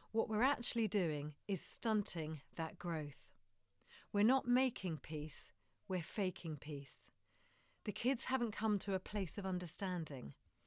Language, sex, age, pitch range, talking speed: English, female, 40-59, 155-220 Hz, 135 wpm